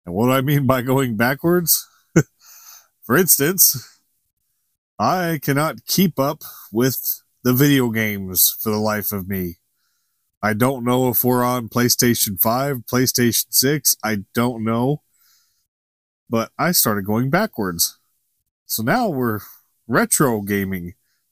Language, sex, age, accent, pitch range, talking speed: English, male, 30-49, American, 105-130 Hz, 130 wpm